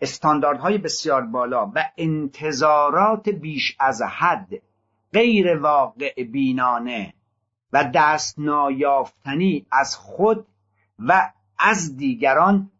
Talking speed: 90 wpm